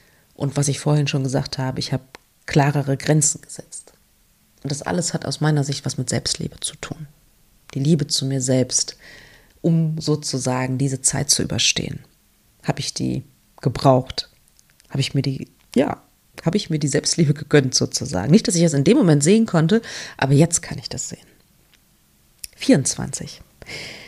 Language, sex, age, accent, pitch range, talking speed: German, female, 30-49, German, 140-165 Hz, 165 wpm